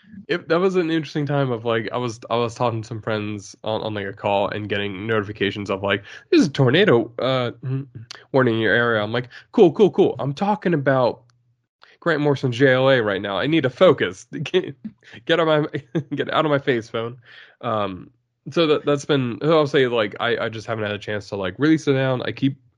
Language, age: English, 20-39